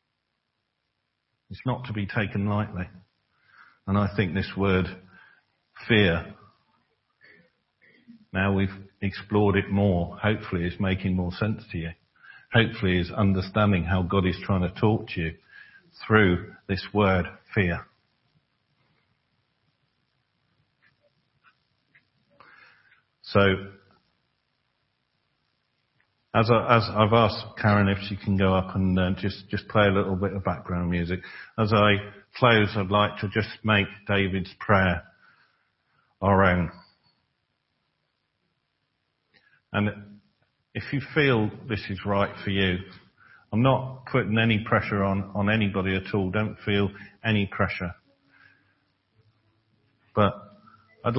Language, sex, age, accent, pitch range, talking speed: English, male, 50-69, British, 95-110 Hz, 115 wpm